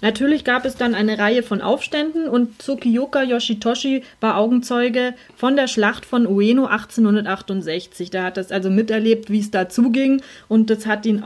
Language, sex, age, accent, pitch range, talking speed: German, female, 30-49, German, 210-260 Hz, 170 wpm